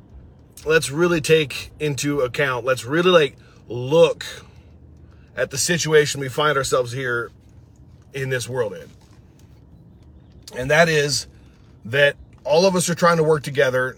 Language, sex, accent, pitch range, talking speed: English, male, American, 125-160 Hz, 135 wpm